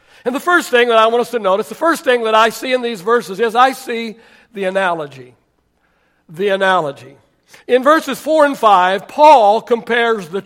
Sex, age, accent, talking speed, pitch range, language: male, 60-79, American, 195 wpm, 185-255 Hz, English